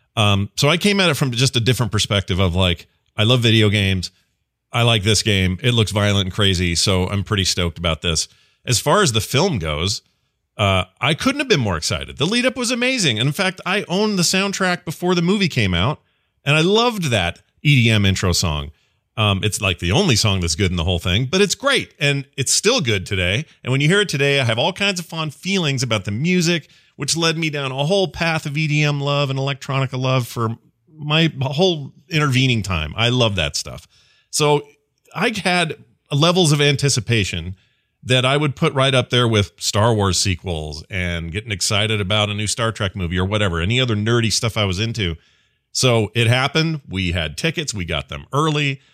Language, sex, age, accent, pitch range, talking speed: English, male, 40-59, American, 100-150 Hz, 210 wpm